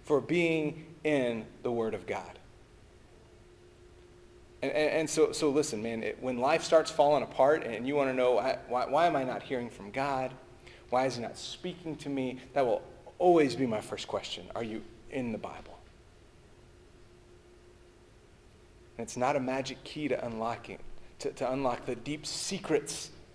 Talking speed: 170 wpm